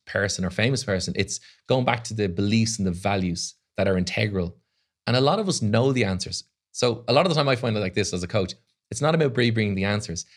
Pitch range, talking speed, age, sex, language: 95-120 Hz, 260 wpm, 30-49, male, English